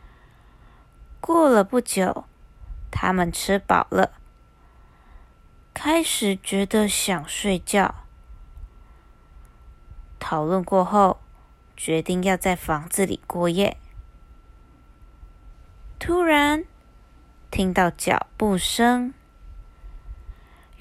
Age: 20-39